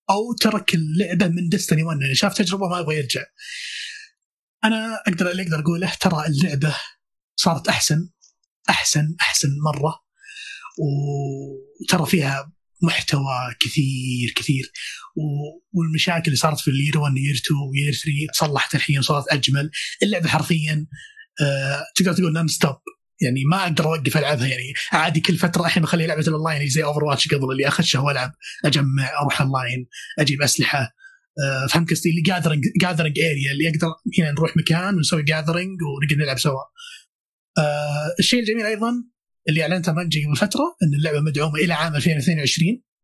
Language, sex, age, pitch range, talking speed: Arabic, male, 30-49, 145-180 Hz, 150 wpm